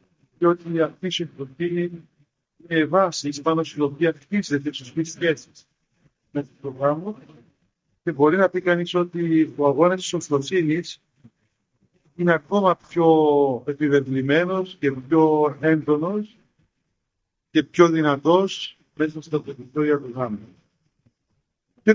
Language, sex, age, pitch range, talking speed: Greek, male, 50-69, 145-175 Hz, 110 wpm